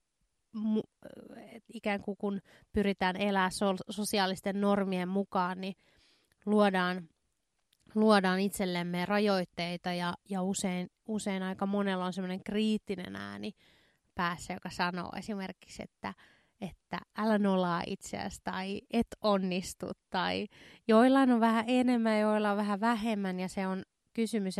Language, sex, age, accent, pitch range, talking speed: Finnish, female, 20-39, native, 185-210 Hz, 120 wpm